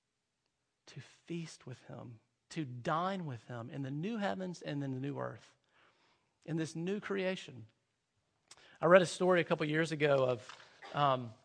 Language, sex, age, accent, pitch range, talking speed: English, male, 40-59, American, 140-185 Hz, 160 wpm